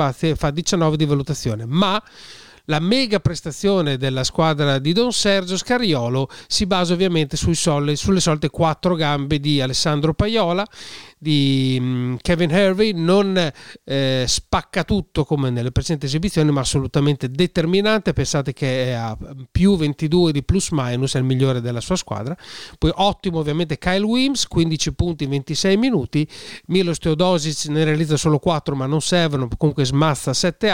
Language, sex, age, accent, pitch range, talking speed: Italian, male, 40-59, native, 140-175 Hz, 150 wpm